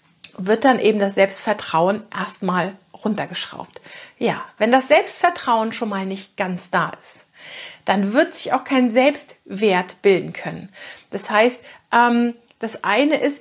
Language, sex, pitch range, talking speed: German, female, 205-260 Hz, 135 wpm